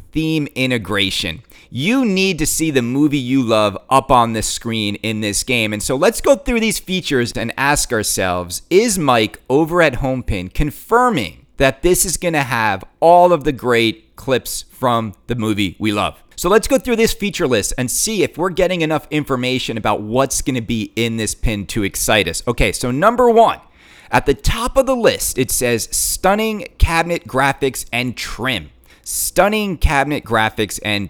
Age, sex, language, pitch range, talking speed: 30-49, male, English, 120-190 Hz, 185 wpm